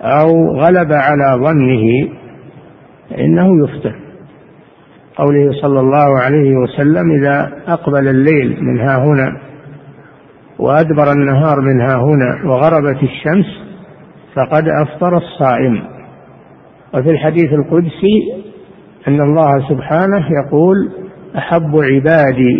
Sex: male